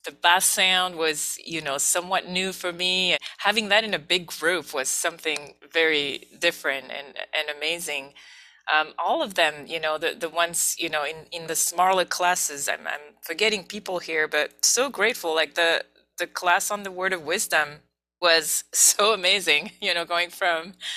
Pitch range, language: 155-195 Hz, English